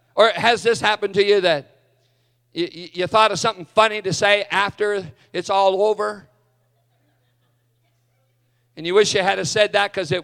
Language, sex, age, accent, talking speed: English, male, 50-69, American, 170 wpm